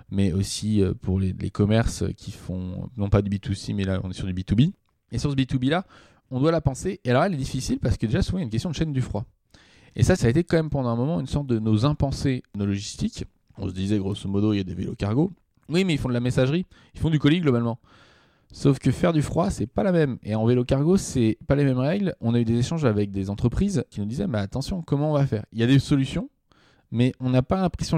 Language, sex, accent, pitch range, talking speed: French, male, French, 105-140 Hz, 285 wpm